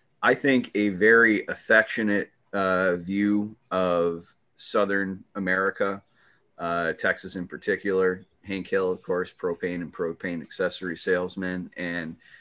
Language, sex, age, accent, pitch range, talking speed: English, male, 30-49, American, 85-100 Hz, 115 wpm